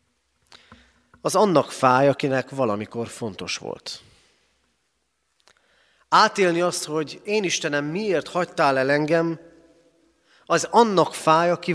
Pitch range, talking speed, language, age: 110-175 Hz, 100 wpm, Hungarian, 30-49